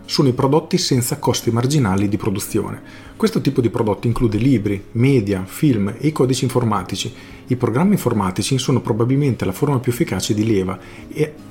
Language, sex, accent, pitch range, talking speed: Italian, male, native, 100-125 Hz, 165 wpm